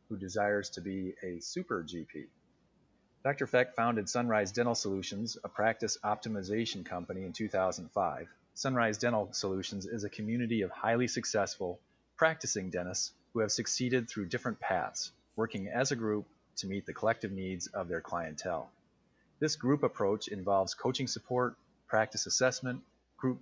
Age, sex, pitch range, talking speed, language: 30-49, male, 100-120 Hz, 145 wpm, English